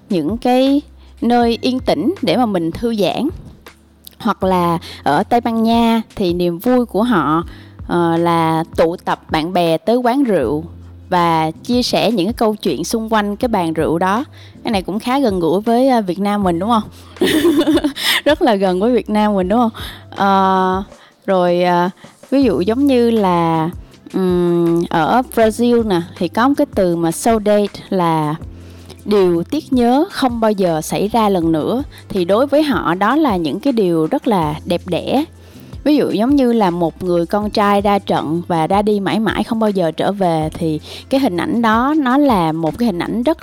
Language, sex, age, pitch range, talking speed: Vietnamese, female, 20-39, 170-240 Hz, 190 wpm